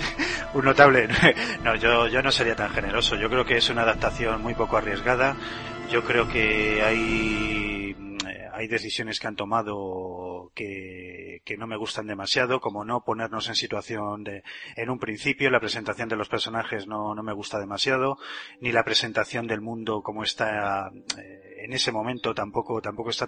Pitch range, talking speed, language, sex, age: 105-120 Hz, 170 wpm, Spanish, male, 30-49